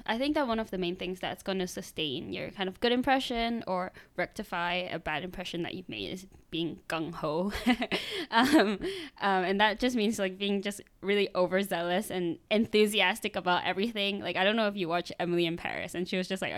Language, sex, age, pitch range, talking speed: English, female, 10-29, 180-210 Hz, 210 wpm